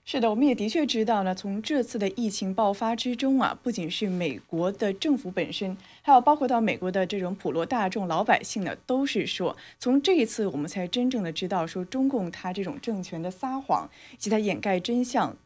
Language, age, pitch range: Chinese, 20-39, 180-250 Hz